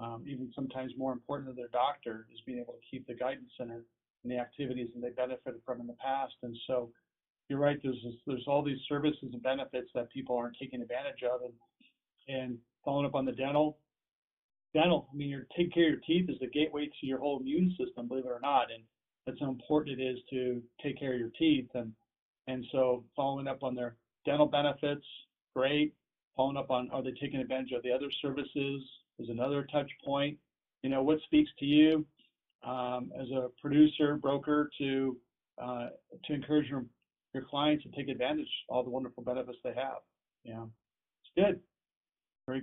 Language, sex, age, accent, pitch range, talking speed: English, male, 40-59, American, 125-150 Hz, 195 wpm